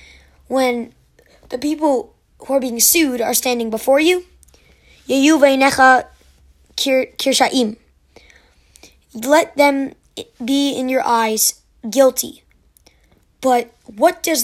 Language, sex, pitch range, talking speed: English, female, 235-280 Hz, 100 wpm